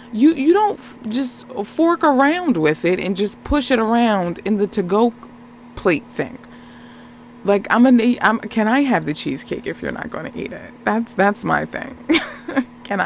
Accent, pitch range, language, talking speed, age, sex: American, 170-245 Hz, English, 180 wpm, 20-39, female